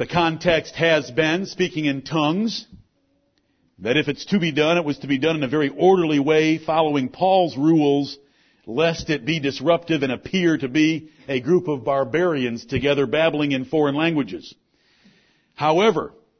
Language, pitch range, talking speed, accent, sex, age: English, 140-175 Hz, 160 wpm, American, male, 50-69